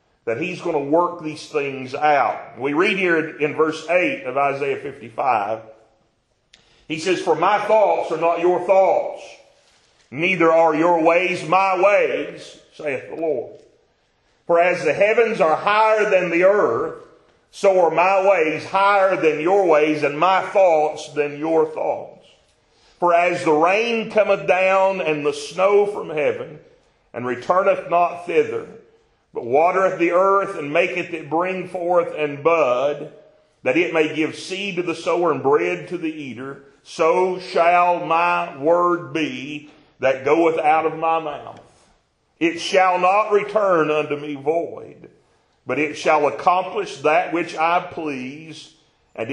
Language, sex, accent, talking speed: English, male, American, 150 wpm